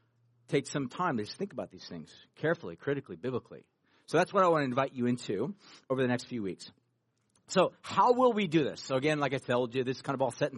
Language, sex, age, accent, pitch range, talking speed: English, male, 40-59, American, 135-175 Hz, 250 wpm